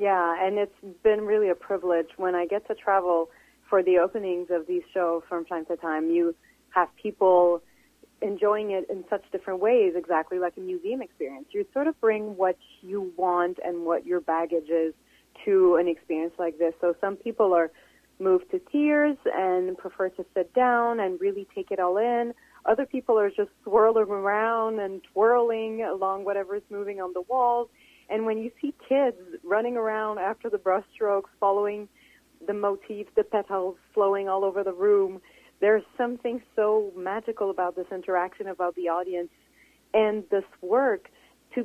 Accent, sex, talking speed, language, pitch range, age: American, female, 175 wpm, English, 185-230 Hz, 30-49